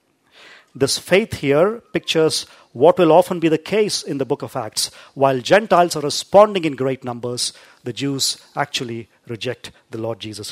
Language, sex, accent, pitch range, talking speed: English, male, Indian, 135-205 Hz, 165 wpm